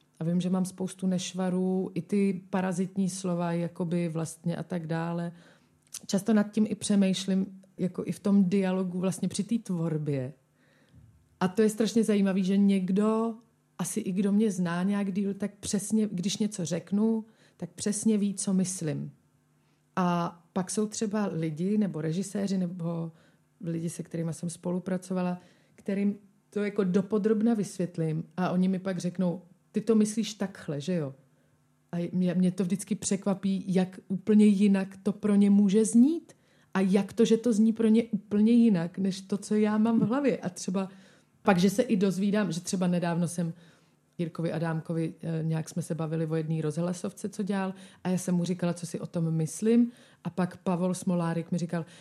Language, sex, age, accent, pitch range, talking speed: Czech, female, 30-49, native, 175-210 Hz, 175 wpm